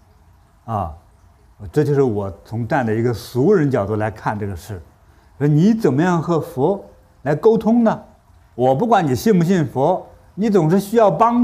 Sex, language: male, Chinese